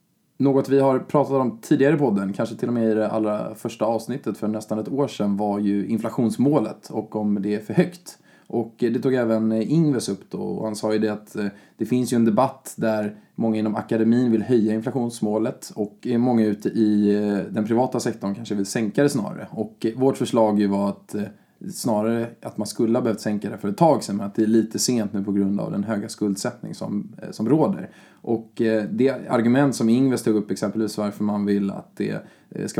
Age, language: 20-39, Swedish